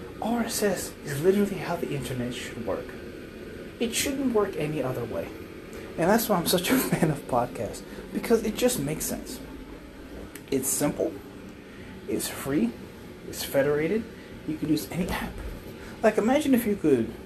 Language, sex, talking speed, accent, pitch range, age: English, male, 155 wpm, American, 125-200 Hz, 30-49